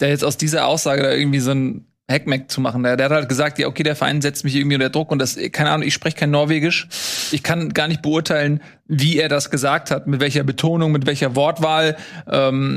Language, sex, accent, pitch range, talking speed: German, male, German, 140-165 Hz, 235 wpm